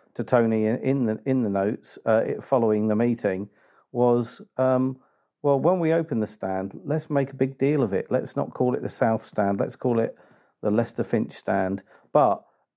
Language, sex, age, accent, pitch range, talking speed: English, male, 40-59, British, 105-125 Hz, 195 wpm